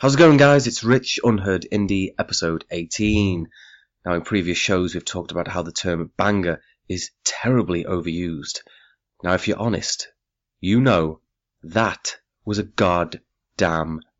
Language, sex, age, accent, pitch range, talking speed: English, male, 30-49, British, 85-110 Hz, 145 wpm